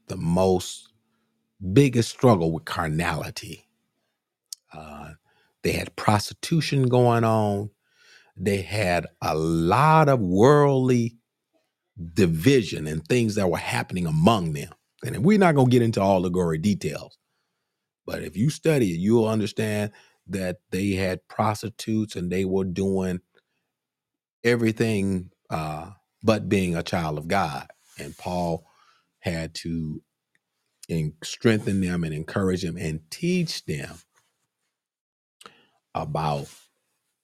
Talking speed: 115 wpm